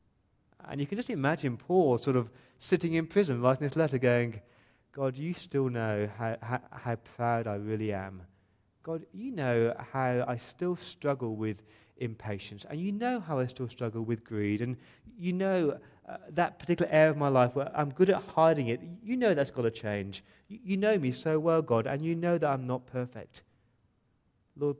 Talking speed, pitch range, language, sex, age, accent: 195 wpm, 110-150 Hz, English, male, 30-49, British